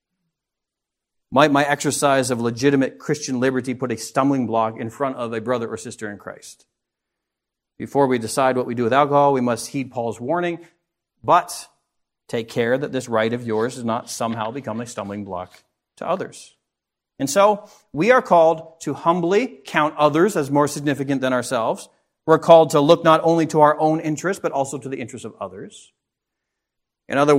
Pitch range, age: 115-150 Hz, 40-59